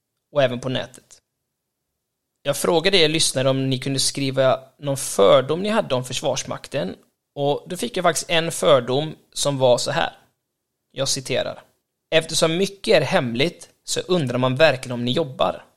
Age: 20-39